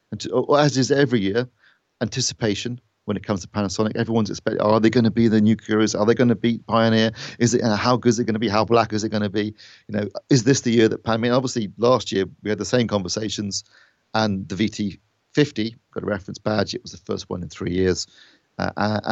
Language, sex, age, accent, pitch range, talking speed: English, male, 40-59, British, 95-115 Hz, 245 wpm